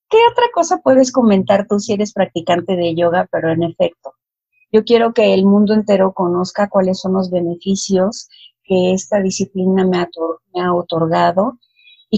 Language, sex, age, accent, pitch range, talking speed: Spanish, female, 40-59, Mexican, 185-230 Hz, 165 wpm